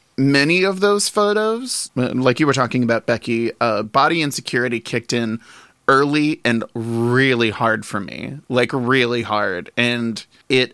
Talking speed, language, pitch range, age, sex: 145 wpm, English, 115-130 Hz, 30-49, male